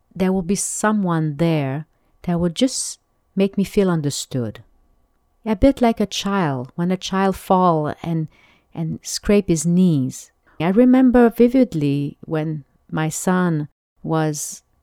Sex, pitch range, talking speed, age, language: female, 155-205 Hz, 135 wpm, 40-59, English